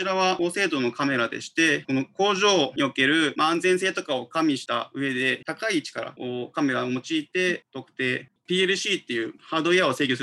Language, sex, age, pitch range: Japanese, male, 20-39, 130-190 Hz